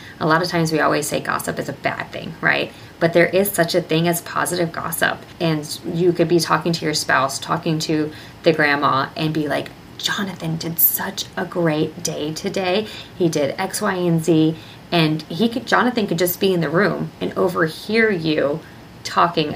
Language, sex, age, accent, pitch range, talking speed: English, female, 20-39, American, 155-175 Hz, 195 wpm